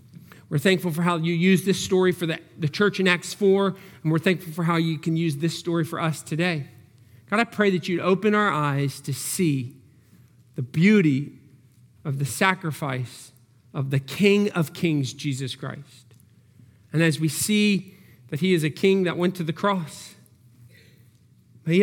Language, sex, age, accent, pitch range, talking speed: English, male, 40-59, American, 140-195 Hz, 180 wpm